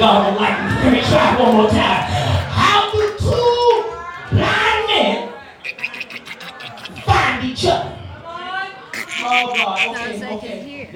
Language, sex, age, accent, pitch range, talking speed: English, male, 30-49, American, 230-300 Hz, 100 wpm